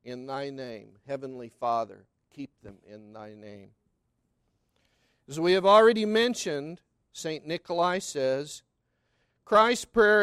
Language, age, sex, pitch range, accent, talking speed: English, 50-69, male, 140-200 Hz, American, 115 wpm